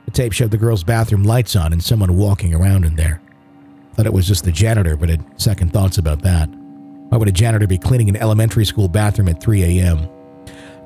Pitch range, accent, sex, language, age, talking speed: 85-120 Hz, American, male, English, 50-69, 210 wpm